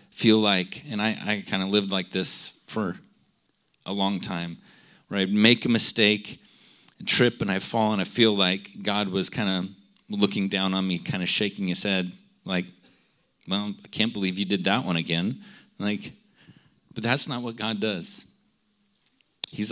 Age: 40-59